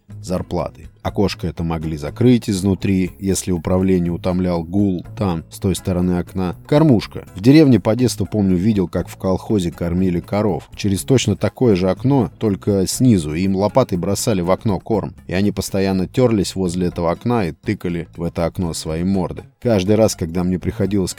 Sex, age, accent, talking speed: male, 20-39, native, 165 wpm